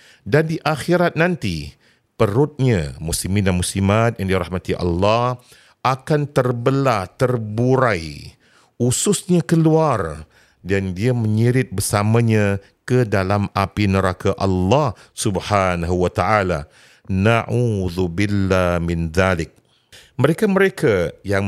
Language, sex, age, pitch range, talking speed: Malay, male, 40-59, 95-130 Hz, 85 wpm